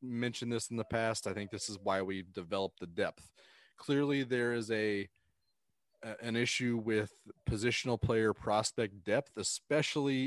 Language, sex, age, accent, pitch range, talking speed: English, male, 30-49, American, 100-120 Hz, 150 wpm